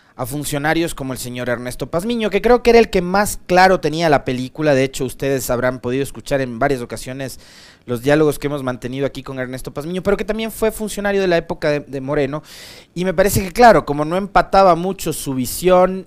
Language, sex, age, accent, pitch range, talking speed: Spanish, male, 30-49, Mexican, 125-170 Hz, 215 wpm